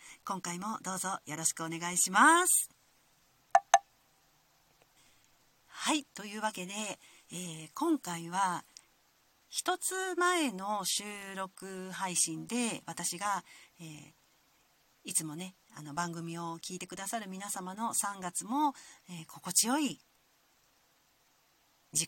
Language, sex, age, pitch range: Japanese, female, 40-59, 175-260 Hz